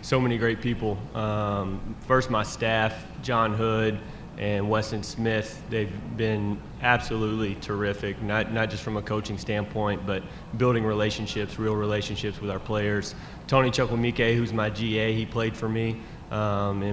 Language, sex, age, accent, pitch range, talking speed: English, male, 20-39, American, 110-125 Hz, 150 wpm